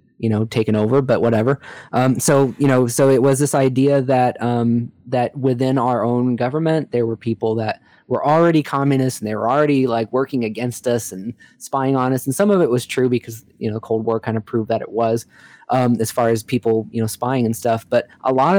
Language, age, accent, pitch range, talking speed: English, 20-39, American, 115-130 Hz, 230 wpm